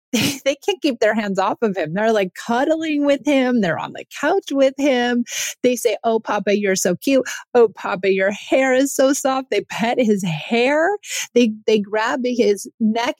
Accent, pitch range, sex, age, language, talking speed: American, 185-265 Hz, female, 30-49, English, 190 wpm